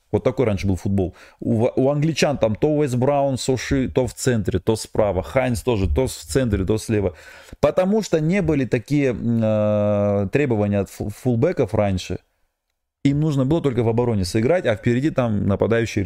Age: 30-49